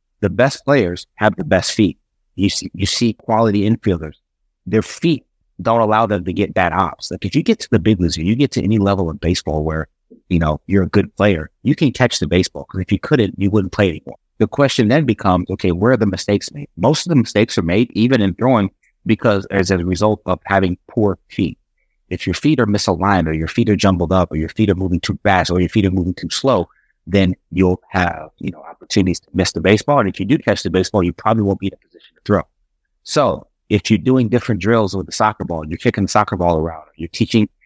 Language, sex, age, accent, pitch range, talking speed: English, male, 30-49, American, 90-110 Hz, 245 wpm